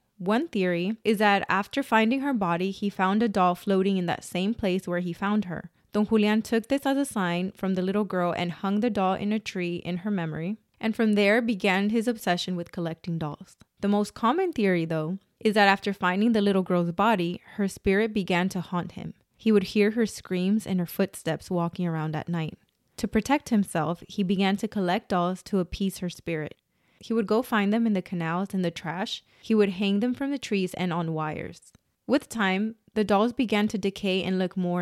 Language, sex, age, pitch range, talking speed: English, female, 20-39, 180-220 Hz, 215 wpm